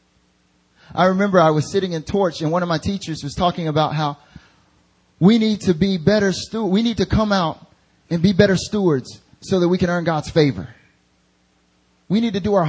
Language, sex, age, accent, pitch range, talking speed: English, male, 30-49, American, 100-155 Hz, 205 wpm